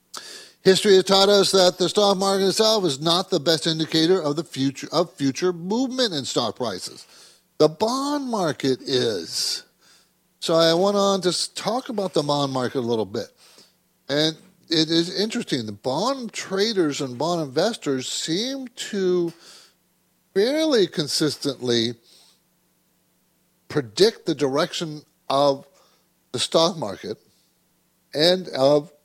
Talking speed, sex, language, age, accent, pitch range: 130 wpm, male, English, 60-79, American, 140-185 Hz